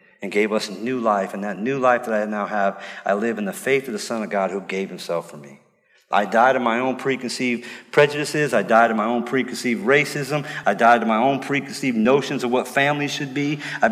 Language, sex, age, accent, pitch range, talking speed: English, male, 40-59, American, 120-180 Hz, 240 wpm